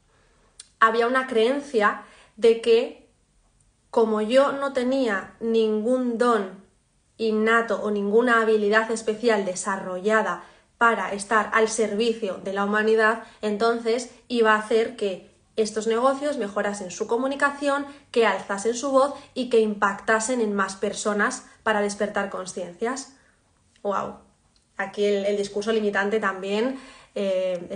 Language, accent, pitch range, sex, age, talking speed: Spanish, Spanish, 205-255 Hz, female, 20-39, 120 wpm